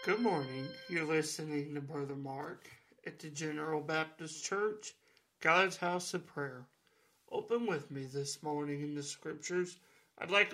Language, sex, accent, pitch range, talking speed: English, male, American, 150-190 Hz, 150 wpm